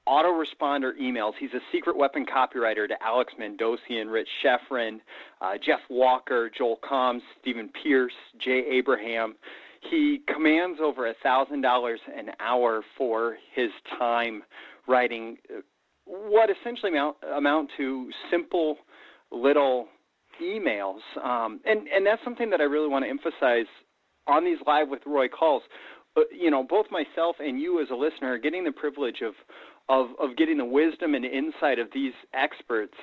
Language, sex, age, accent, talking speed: English, male, 40-59, American, 155 wpm